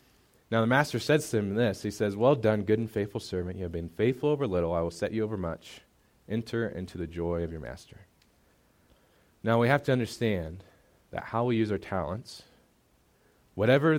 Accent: American